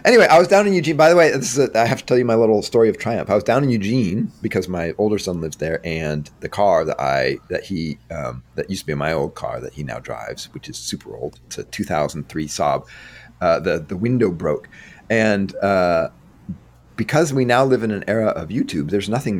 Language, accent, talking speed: English, American, 240 wpm